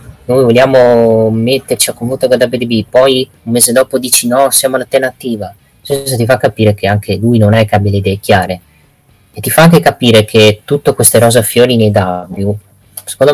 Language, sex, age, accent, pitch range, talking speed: Italian, female, 20-39, native, 105-125 Hz, 190 wpm